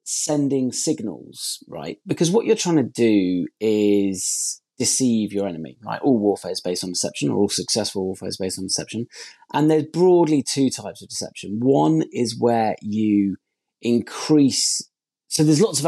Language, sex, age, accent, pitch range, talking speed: English, male, 30-49, British, 100-130 Hz, 165 wpm